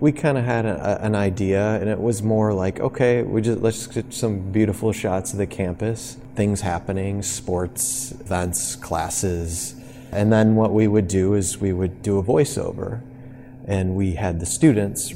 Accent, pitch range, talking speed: American, 95-120 Hz, 180 wpm